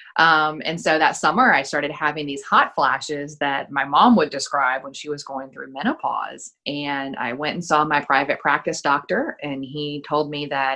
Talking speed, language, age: 200 wpm, English, 30-49